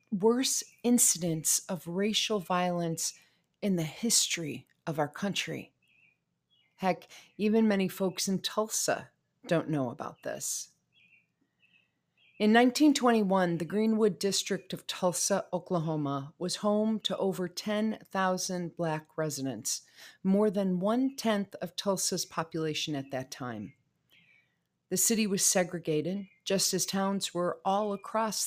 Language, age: English, 40-59